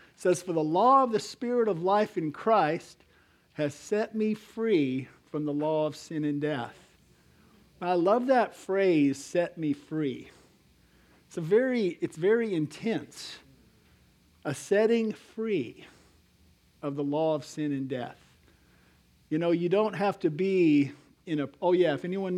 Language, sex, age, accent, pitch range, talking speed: English, male, 50-69, American, 150-200 Hz, 160 wpm